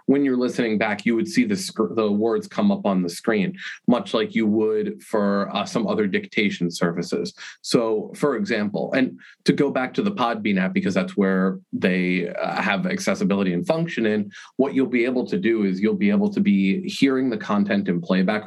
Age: 30-49